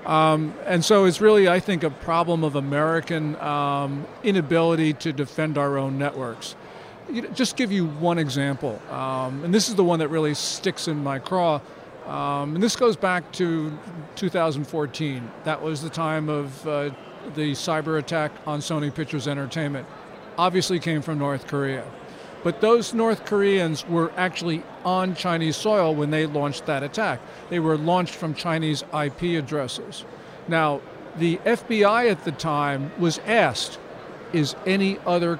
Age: 50-69